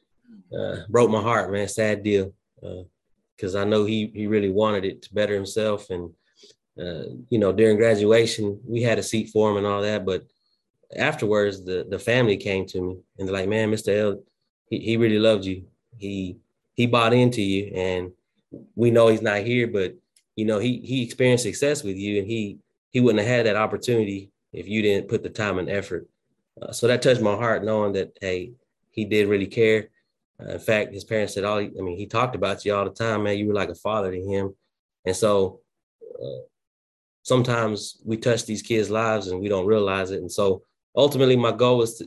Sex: male